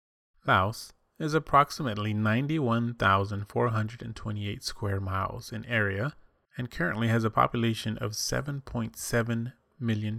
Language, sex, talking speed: English, male, 95 wpm